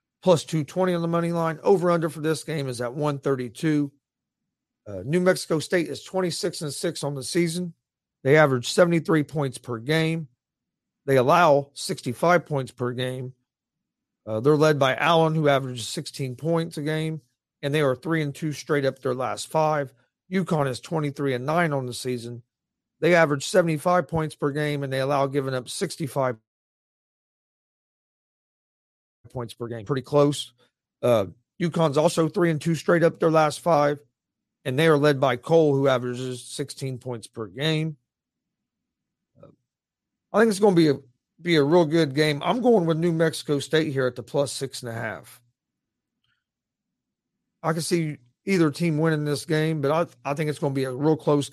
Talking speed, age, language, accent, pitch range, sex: 175 wpm, 40-59, English, American, 130-165 Hz, male